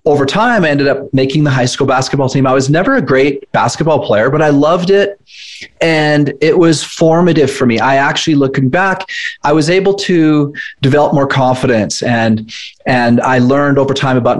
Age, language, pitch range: 30-49, English, 120-150 Hz